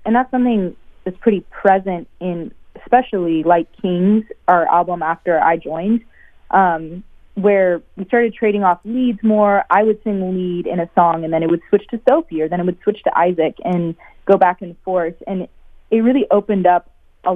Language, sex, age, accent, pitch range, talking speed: English, female, 20-39, American, 170-205 Hz, 190 wpm